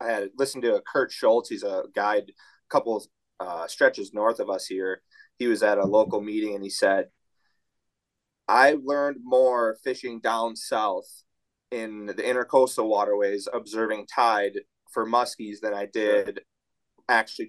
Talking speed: 160 wpm